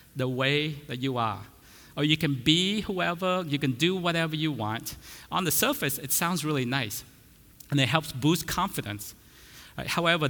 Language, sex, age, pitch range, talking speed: English, male, 50-69, 120-160 Hz, 175 wpm